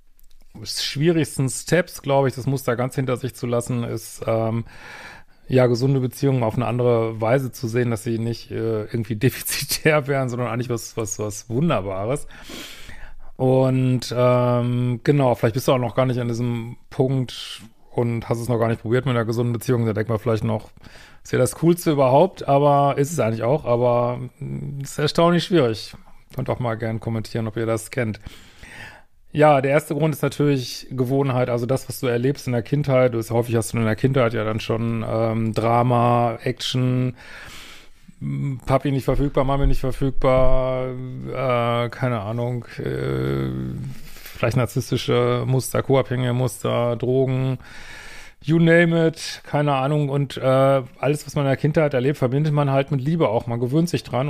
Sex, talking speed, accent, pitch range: male, 175 wpm, German, 115-135 Hz